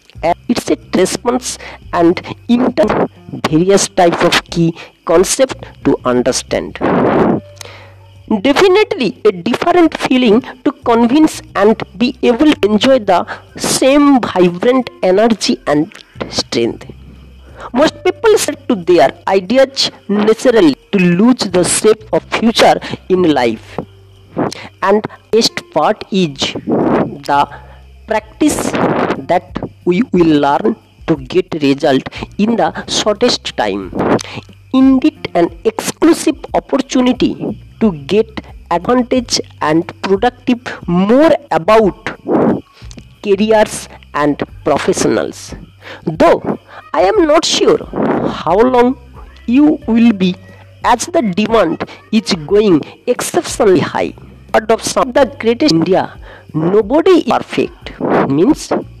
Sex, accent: female, Indian